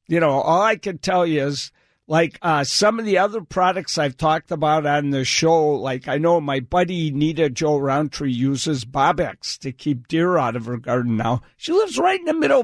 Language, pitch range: English, 130-175 Hz